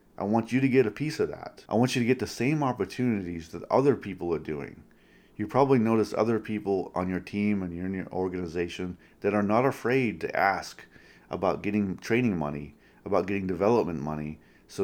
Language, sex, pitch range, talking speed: English, male, 90-105 Hz, 200 wpm